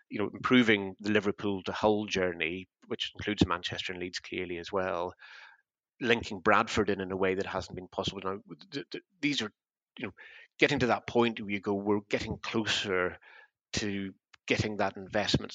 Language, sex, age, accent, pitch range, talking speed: English, male, 30-49, British, 95-105 Hz, 175 wpm